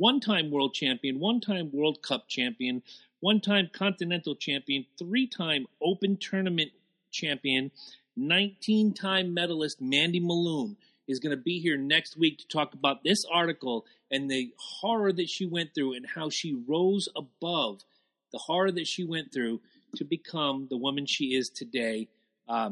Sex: male